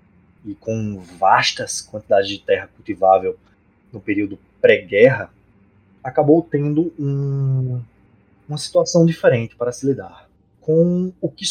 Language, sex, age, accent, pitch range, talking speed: Portuguese, male, 20-39, Brazilian, 100-145 Hz, 115 wpm